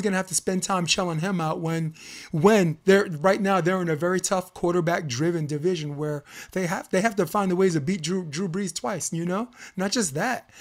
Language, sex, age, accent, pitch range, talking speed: English, male, 30-49, American, 160-205 Hz, 230 wpm